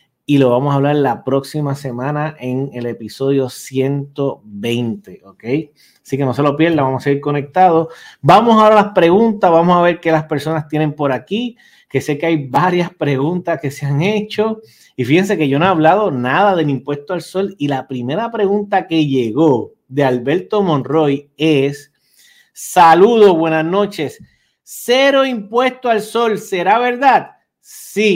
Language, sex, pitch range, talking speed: Spanish, male, 145-200 Hz, 165 wpm